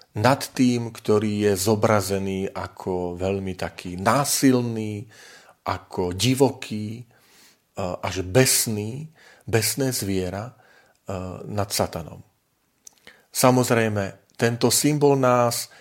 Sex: male